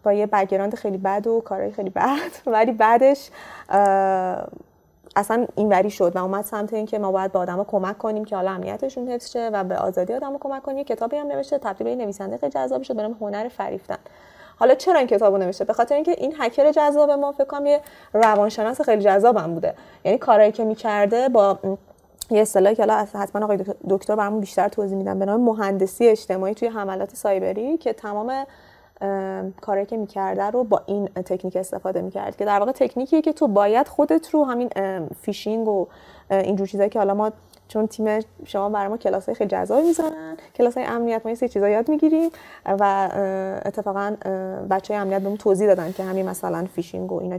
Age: 30-49